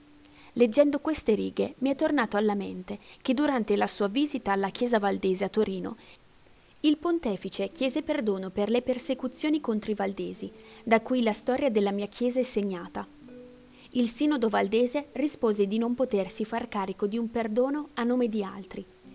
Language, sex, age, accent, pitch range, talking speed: Italian, female, 20-39, native, 200-260 Hz, 165 wpm